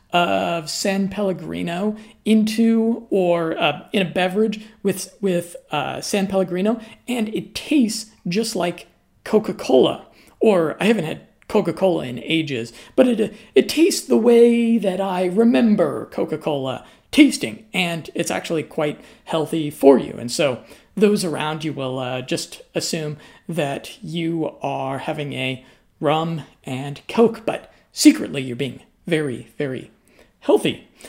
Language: English